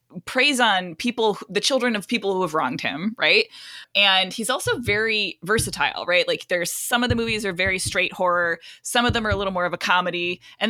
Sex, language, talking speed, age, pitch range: female, English, 220 wpm, 20-39, 165-220 Hz